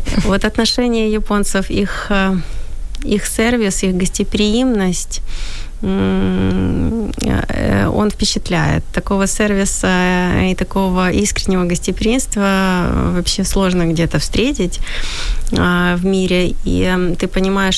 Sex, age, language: female, 20-39, Ukrainian